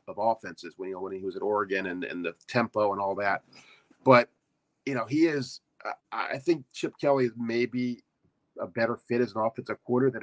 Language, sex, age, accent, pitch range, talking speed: English, male, 40-59, American, 110-130 Hz, 200 wpm